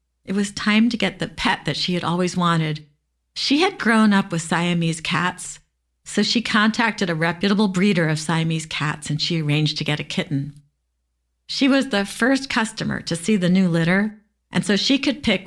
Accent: American